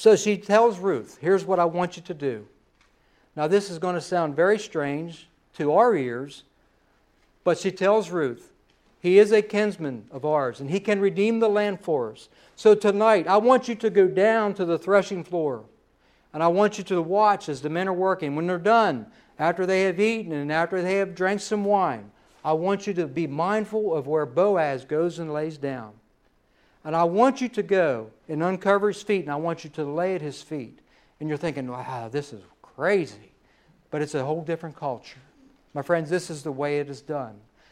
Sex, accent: male, American